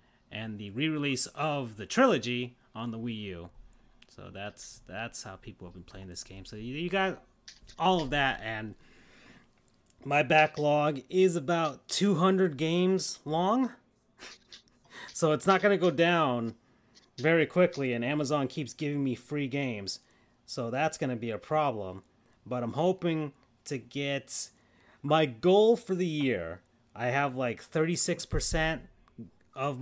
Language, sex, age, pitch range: English, male, 30-49, 115-160 Hz